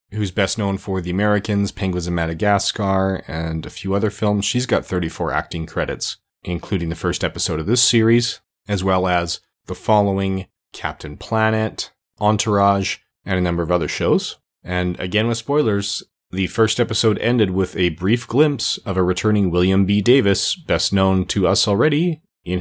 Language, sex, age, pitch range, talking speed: English, male, 30-49, 90-105 Hz, 170 wpm